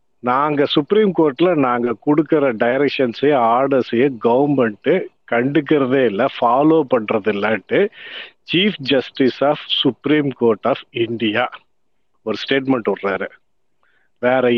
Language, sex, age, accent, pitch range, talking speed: Tamil, male, 50-69, native, 130-175 Hz, 95 wpm